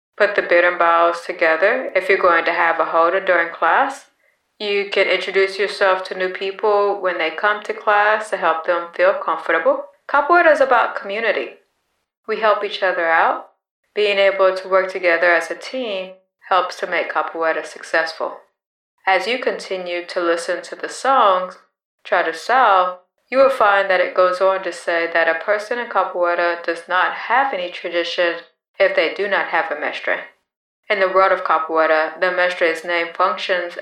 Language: English